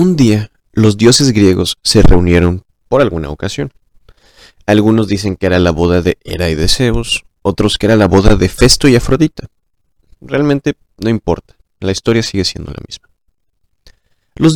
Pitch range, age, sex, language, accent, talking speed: 95-125 Hz, 30-49, male, Spanish, Mexican, 165 wpm